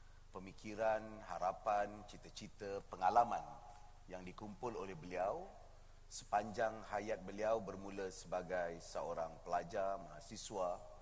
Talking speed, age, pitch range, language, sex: 85 wpm, 30-49, 95-110 Hz, Malay, male